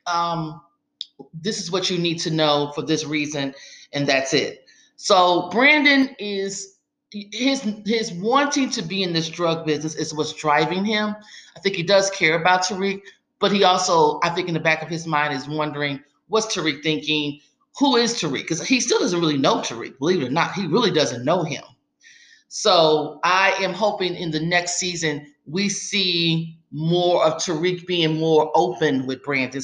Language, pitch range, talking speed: English, 155-195 Hz, 180 wpm